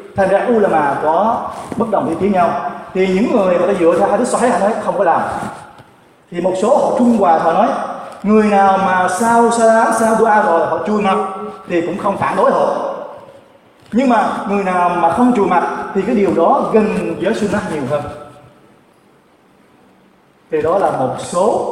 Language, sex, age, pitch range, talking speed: Vietnamese, male, 20-39, 170-215 Hz, 200 wpm